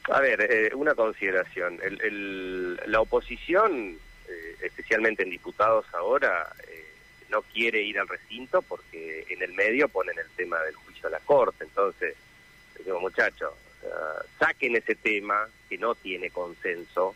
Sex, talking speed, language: male, 140 wpm, Spanish